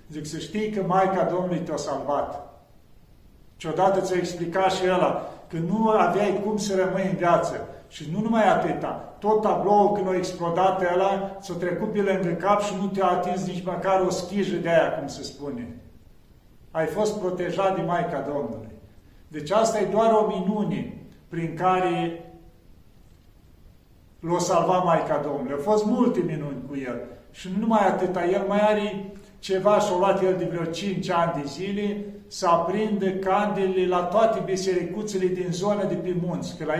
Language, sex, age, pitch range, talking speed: Romanian, male, 40-59, 175-200 Hz, 165 wpm